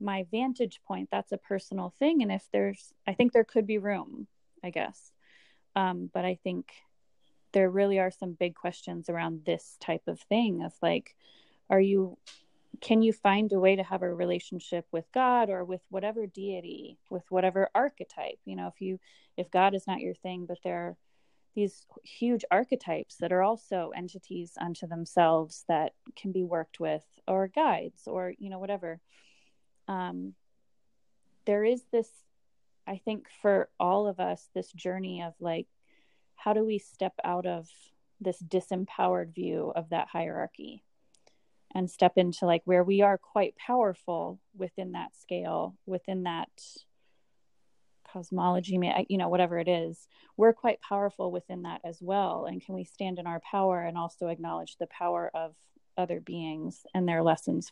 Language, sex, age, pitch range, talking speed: English, female, 20-39, 175-200 Hz, 165 wpm